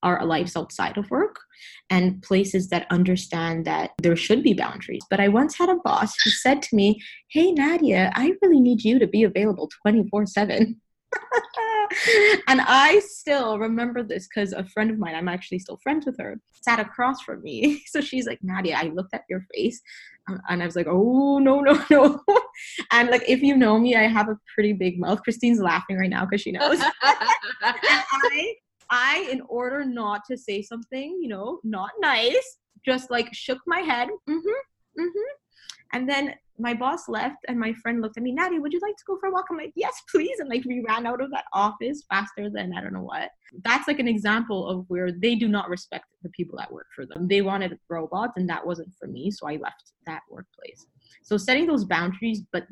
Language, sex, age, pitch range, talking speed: English, female, 20-39, 195-290 Hz, 210 wpm